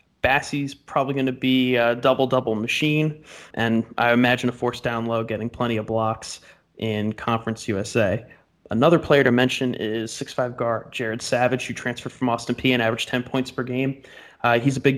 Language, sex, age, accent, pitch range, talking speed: English, male, 30-49, American, 115-130 Hz, 190 wpm